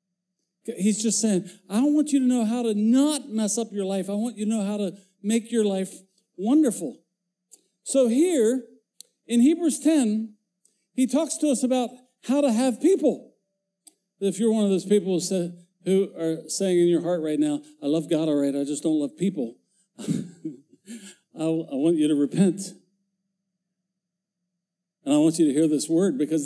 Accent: American